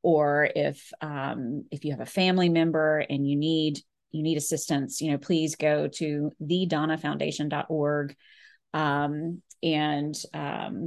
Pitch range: 150-185 Hz